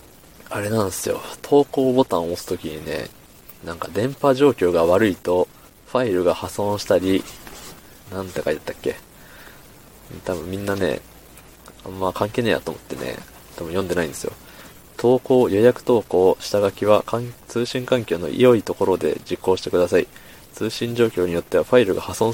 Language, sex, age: Japanese, male, 20-39